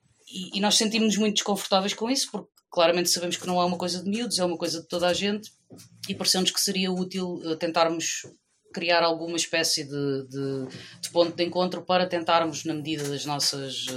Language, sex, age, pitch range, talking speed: Portuguese, female, 20-39, 140-170 Hz, 195 wpm